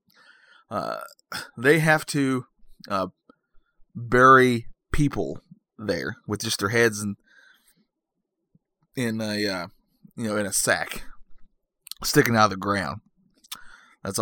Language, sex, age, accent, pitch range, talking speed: English, male, 20-39, American, 100-135 Hz, 115 wpm